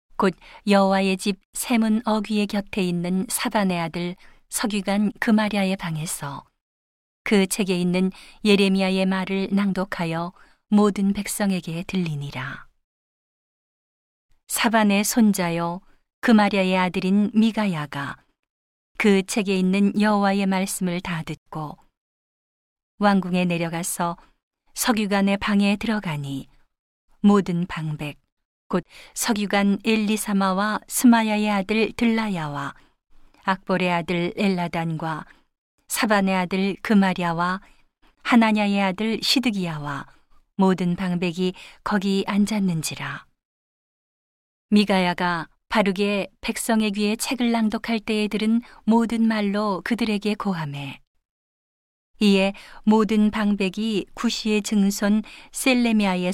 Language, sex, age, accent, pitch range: Korean, female, 40-59, native, 175-210 Hz